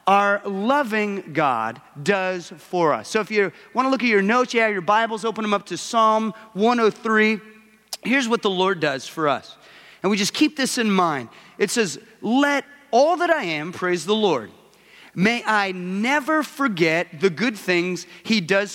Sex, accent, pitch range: male, American, 185-255 Hz